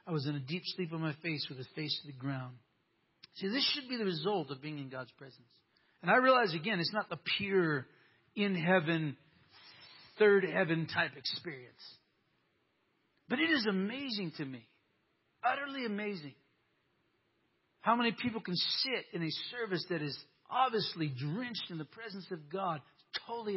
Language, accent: English, American